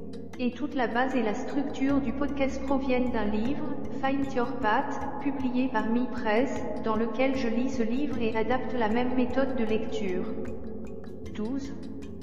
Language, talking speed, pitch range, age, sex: English, 160 wpm, 230-260 Hz, 40-59, female